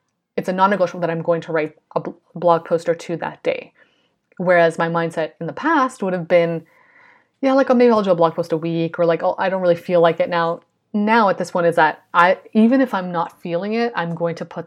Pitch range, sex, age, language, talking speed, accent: 165-195 Hz, female, 30-49, English, 255 wpm, American